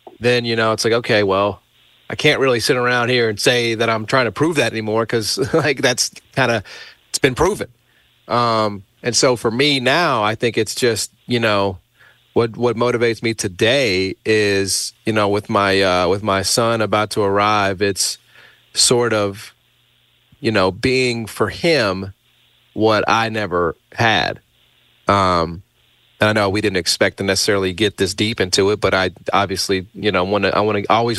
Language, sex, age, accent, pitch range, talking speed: English, male, 30-49, American, 100-120 Hz, 180 wpm